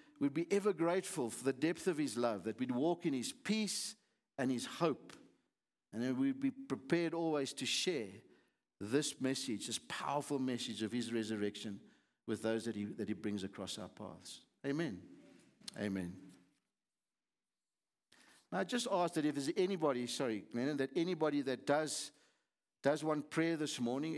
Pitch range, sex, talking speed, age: 120-170 Hz, male, 165 wpm, 60-79